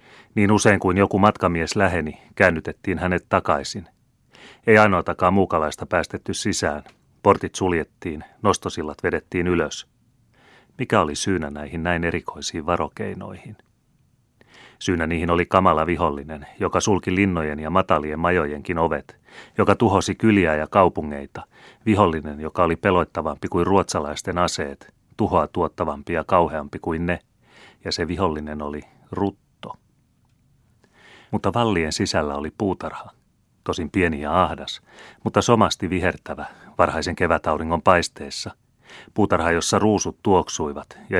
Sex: male